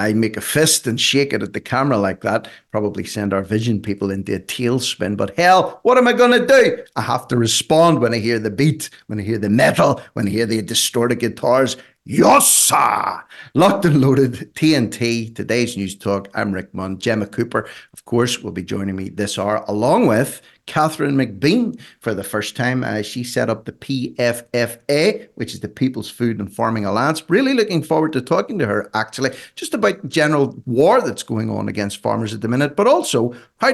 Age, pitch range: 50-69, 110-150 Hz